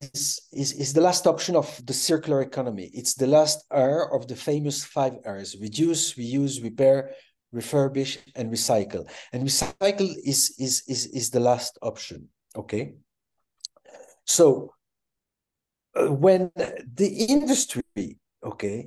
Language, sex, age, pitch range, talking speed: English, male, 60-79, 135-185 Hz, 130 wpm